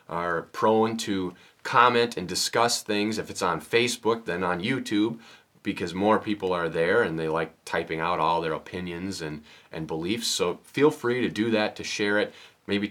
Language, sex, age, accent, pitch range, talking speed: English, male, 30-49, American, 95-120 Hz, 185 wpm